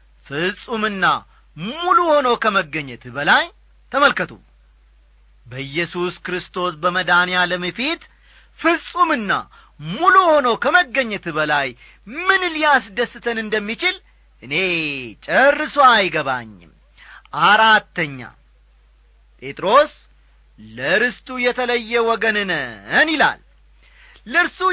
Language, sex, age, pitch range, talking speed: Amharic, male, 40-59, 150-250 Hz, 70 wpm